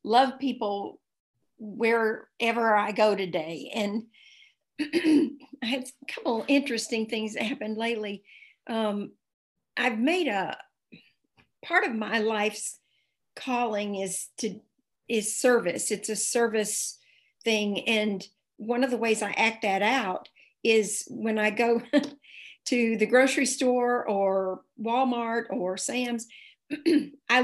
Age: 50-69